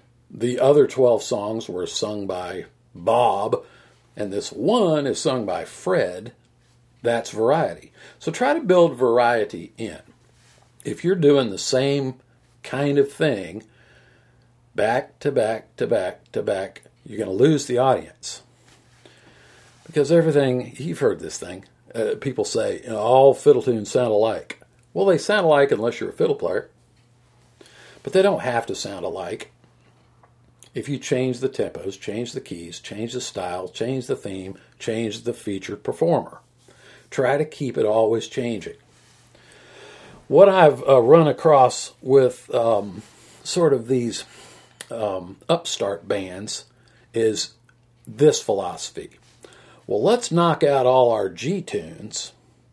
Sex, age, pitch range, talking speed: male, 50-69, 115-150 Hz, 140 wpm